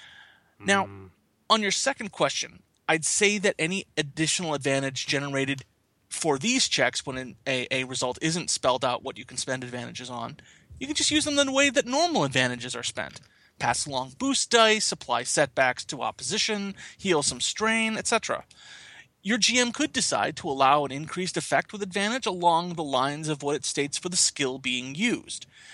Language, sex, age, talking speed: English, male, 30-49, 175 wpm